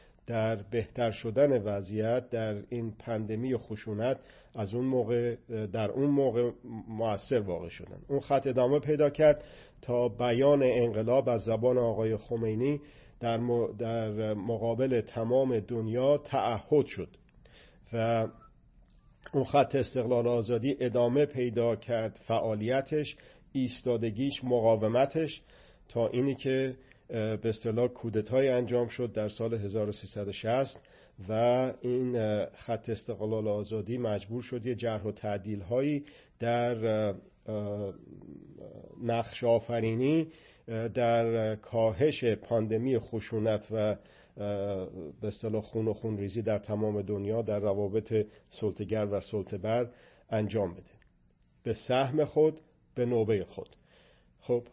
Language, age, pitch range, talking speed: Persian, 50-69, 110-125 Hz, 105 wpm